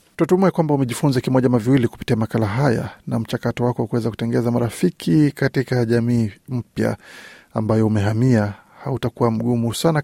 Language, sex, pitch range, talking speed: Swahili, male, 115-140 Hz, 130 wpm